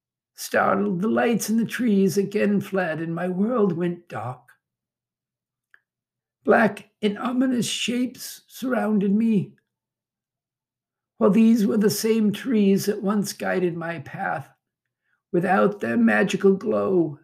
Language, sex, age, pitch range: English, male, 60-79, 175-220 Hz